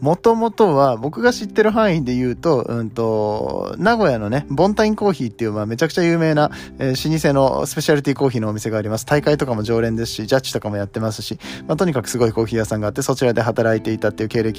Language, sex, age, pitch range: Japanese, male, 20-39, 110-150 Hz